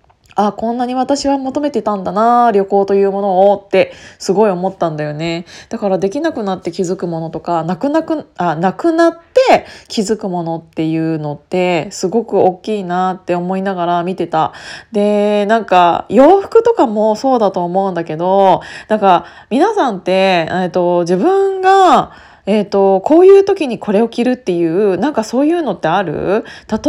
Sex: female